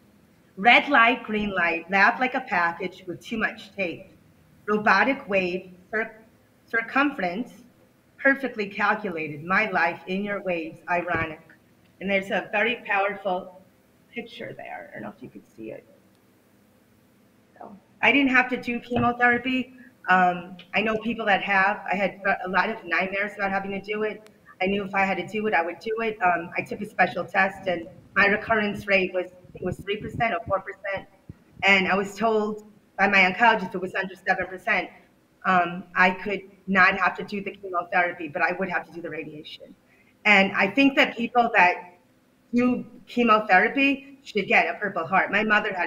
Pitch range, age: 180-225 Hz, 30-49